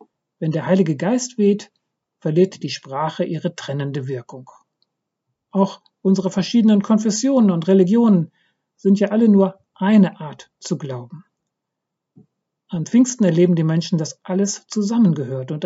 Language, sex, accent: German, male, German